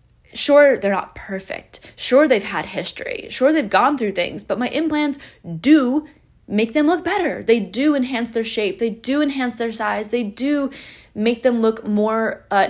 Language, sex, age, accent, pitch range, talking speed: English, female, 20-39, American, 180-230 Hz, 180 wpm